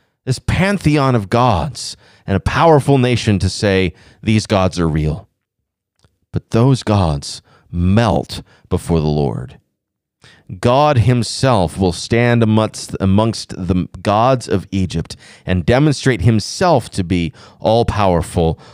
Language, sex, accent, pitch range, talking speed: English, male, American, 95-130 Hz, 115 wpm